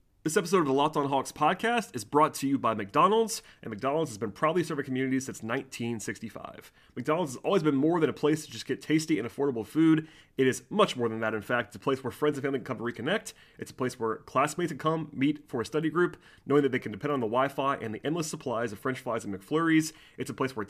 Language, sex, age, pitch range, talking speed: English, male, 30-49, 115-150 Hz, 260 wpm